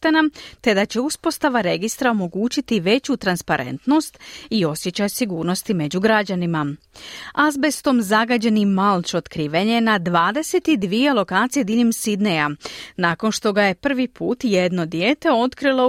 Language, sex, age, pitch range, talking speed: Croatian, female, 40-59, 185-270 Hz, 120 wpm